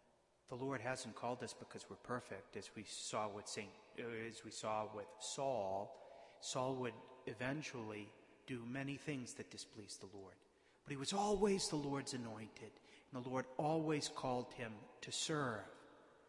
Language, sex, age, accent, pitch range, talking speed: English, male, 40-59, American, 130-165 Hz, 160 wpm